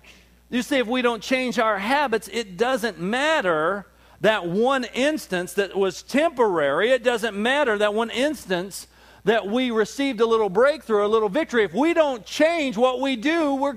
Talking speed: 175 wpm